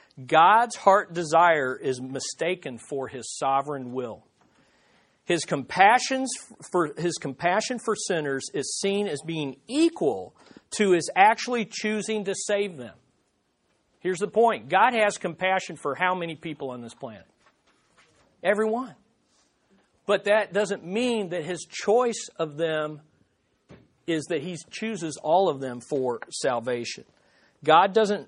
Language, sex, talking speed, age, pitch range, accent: English, male, 130 wpm, 50-69, 140-195 Hz, American